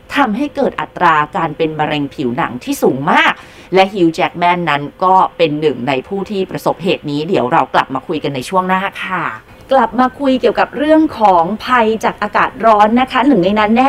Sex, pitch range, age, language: female, 155-210 Hz, 30-49, Thai